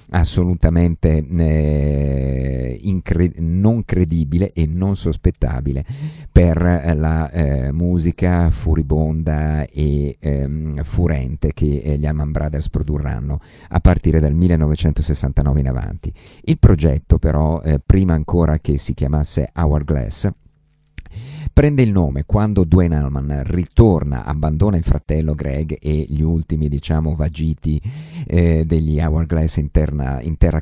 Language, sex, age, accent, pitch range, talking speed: Italian, male, 50-69, native, 75-90 Hz, 120 wpm